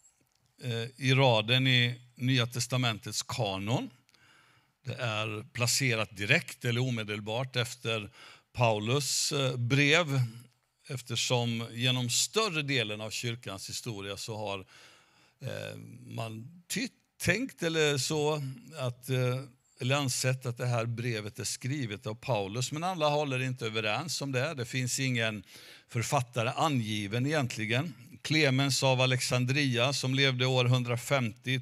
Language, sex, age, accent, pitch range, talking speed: Swedish, male, 60-79, native, 115-135 Hz, 115 wpm